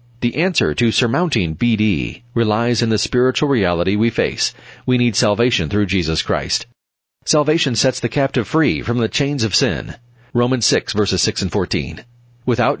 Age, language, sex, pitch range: 40-59, English, male, 105-125 Hz